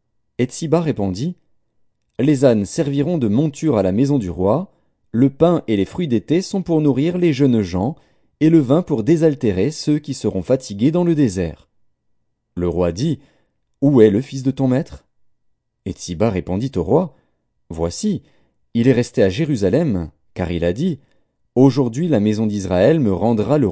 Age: 40-59